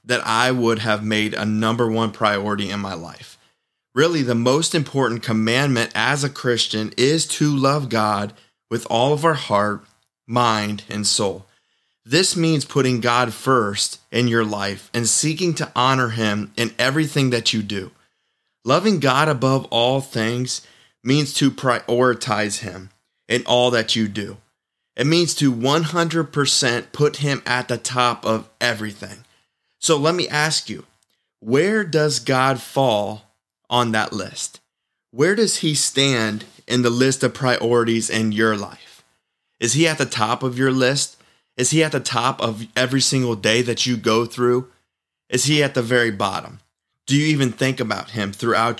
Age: 30-49